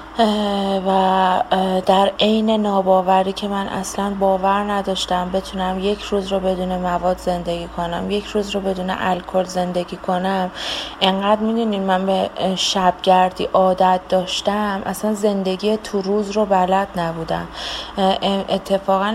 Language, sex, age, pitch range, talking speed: Persian, female, 30-49, 185-225 Hz, 120 wpm